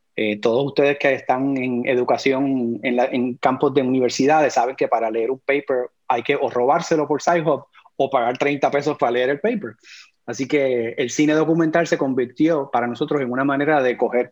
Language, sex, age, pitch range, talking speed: Spanish, male, 30-49, 125-150 Hz, 195 wpm